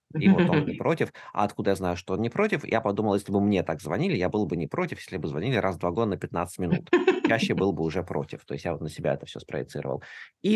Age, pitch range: 20-39, 85-120 Hz